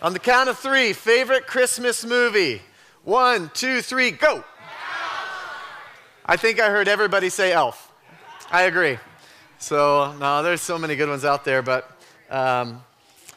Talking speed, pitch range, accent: 145 wpm, 140-170 Hz, American